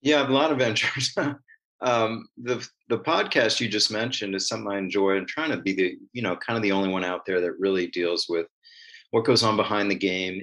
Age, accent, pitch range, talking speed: 40-59, American, 95-115 Hz, 235 wpm